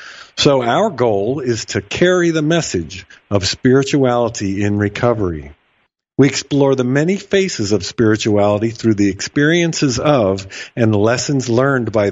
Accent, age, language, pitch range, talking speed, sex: American, 50-69, English, 105-140 Hz, 140 wpm, male